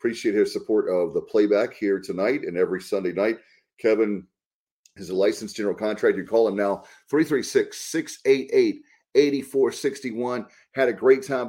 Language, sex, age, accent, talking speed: English, male, 40-59, American, 150 wpm